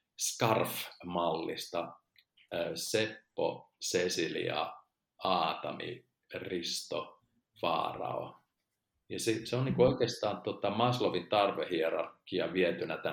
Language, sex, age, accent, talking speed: Finnish, male, 50-69, native, 75 wpm